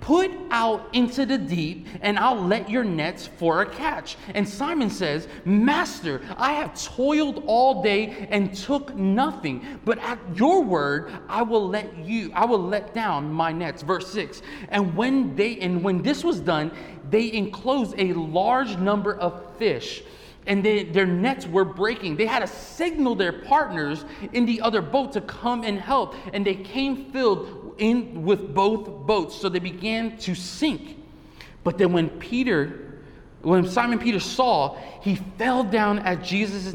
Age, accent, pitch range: 30-49, American, 180-235 Hz